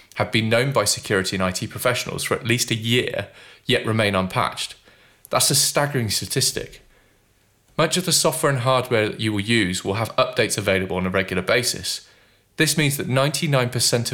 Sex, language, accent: male, English, British